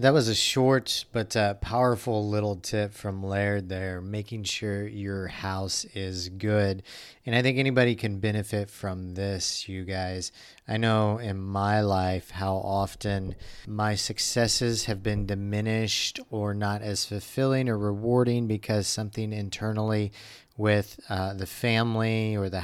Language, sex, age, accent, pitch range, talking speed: English, male, 40-59, American, 100-120 Hz, 145 wpm